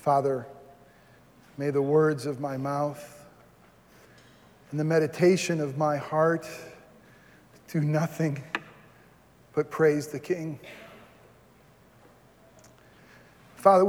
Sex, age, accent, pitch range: male, 40-59, American, 155-205 Hz